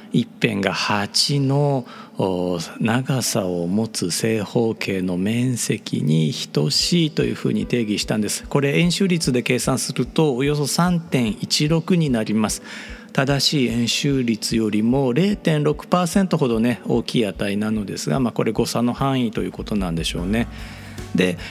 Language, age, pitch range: Japanese, 40-59, 110-145 Hz